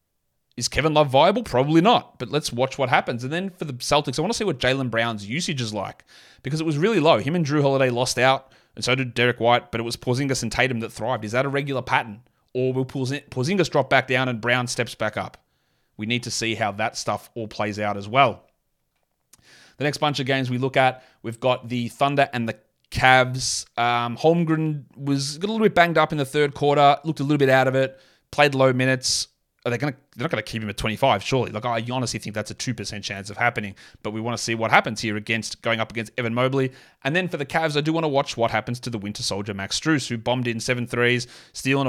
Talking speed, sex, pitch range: 250 wpm, male, 115-140 Hz